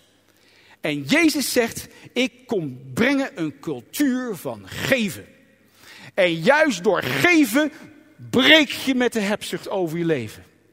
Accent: Dutch